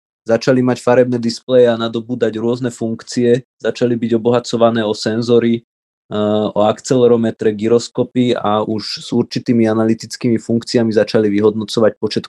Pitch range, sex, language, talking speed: 105-115 Hz, male, Slovak, 120 wpm